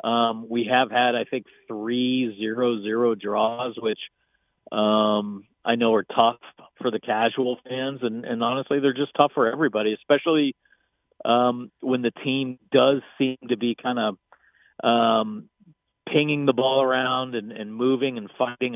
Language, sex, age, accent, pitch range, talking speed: English, male, 40-59, American, 115-135 Hz, 155 wpm